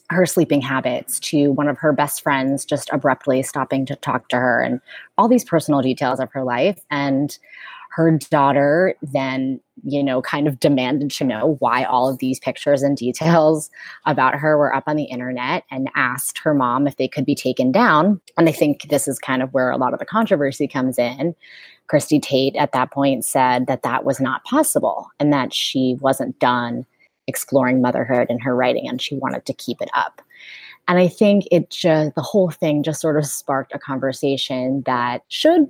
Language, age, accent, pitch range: English, 20-39, American, 130-155 Hz